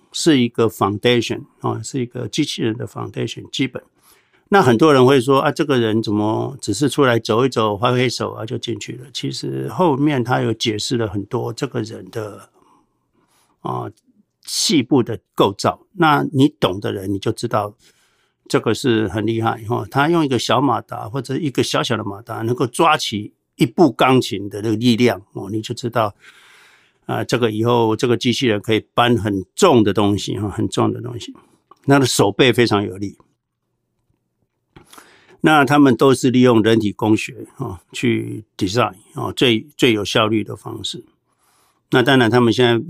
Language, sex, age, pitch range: Chinese, male, 60-79, 110-130 Hz